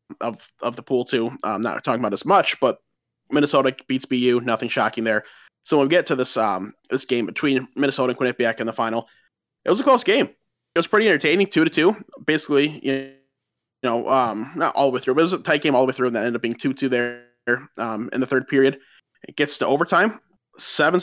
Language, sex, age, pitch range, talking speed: English, male, 20-39, 120-140 Hz, 235 wpm